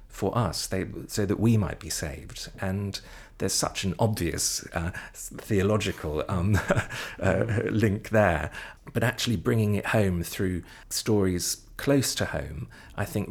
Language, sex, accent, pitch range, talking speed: English, male, British, 90-110 Hz, 145 wpm